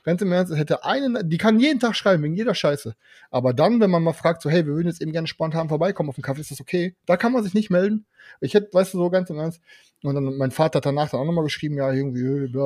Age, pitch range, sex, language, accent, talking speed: 30-49, 135-180 Hz, male, German, German, 295 wpm